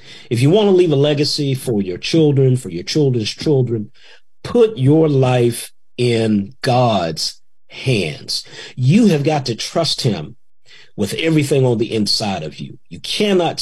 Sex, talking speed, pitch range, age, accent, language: male, 155 wpm, 120-155 Hz, 50-69, American, English